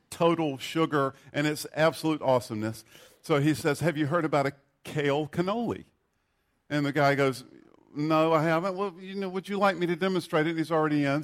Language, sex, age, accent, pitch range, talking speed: English, male, 50-69, American, 130-160 Hz, 200 wpm